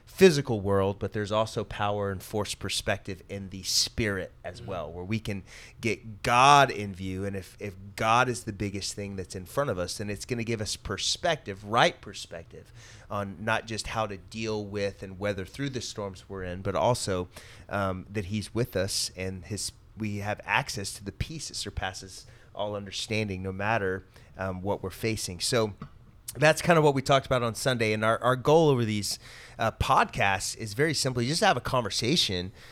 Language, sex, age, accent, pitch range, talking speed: English, male, 30-49, American, 100-120 Hz, 200 wpm